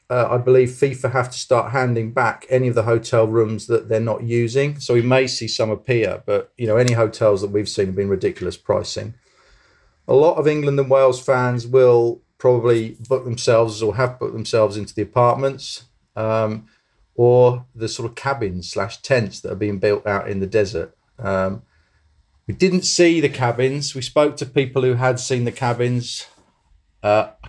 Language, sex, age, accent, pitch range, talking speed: English, male, 40-59, British, 105-125 Hz, 190 wpm